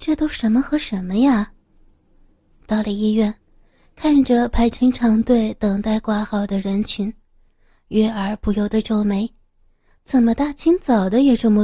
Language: Chinese